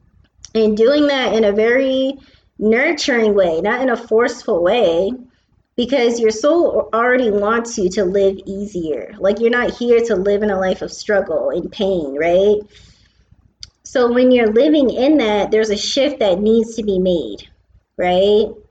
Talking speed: 165 wpm